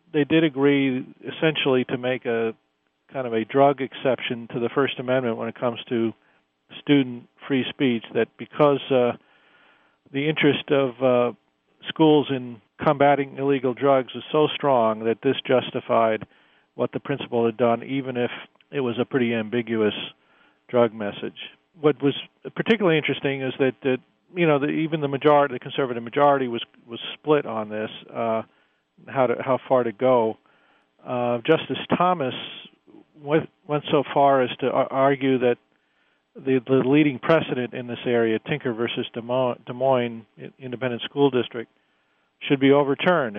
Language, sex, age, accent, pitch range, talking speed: English, male, 40-59, American, 115-140 Hz, 155 wpm